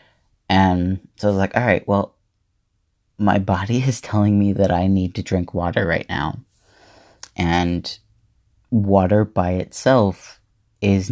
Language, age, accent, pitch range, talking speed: English, 30-49, American, 95-110 Hz, 140 wpm